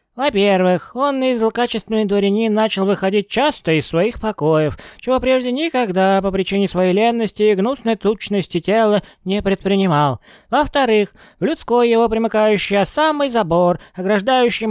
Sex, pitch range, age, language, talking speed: male, 180-235 Hz, 20-39, Russian, 130 wpm